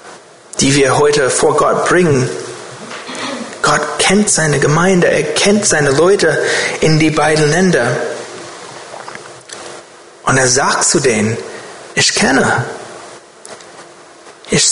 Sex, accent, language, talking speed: male, German, German, 105 wpm